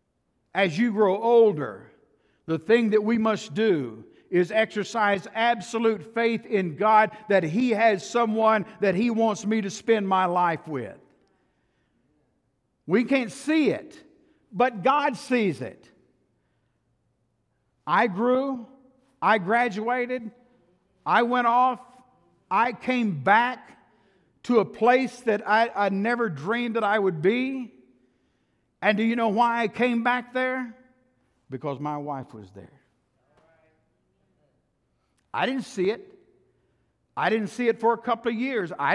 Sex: male